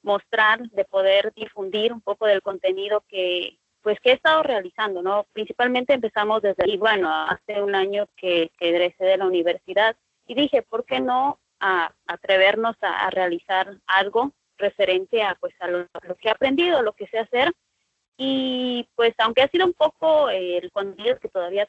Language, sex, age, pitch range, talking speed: Spanish, female, 20-39, 185-235 Hz, 185 wpm